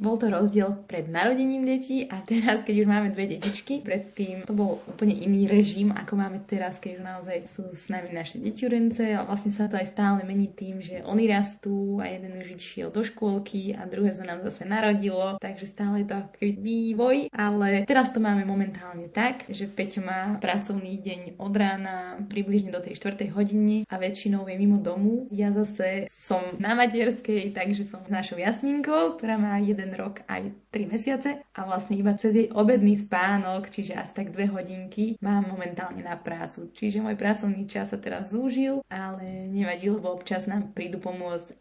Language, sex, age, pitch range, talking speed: Slovak, female, 20-39, 185-210 Hz, 185 wpm